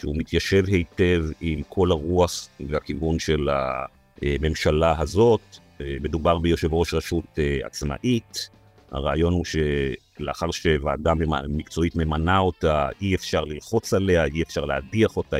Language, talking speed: Hebrew, 115 wpm